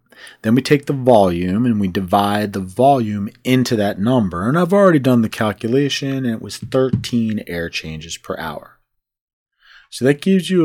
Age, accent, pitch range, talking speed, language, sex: 30-49, American, 90-120 Hz, 175 wpm, English, male